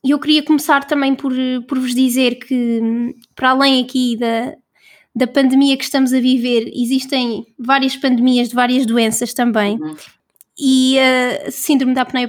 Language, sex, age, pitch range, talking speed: Portuguese, female, 20-39, 240-270 Hz, 155 wpm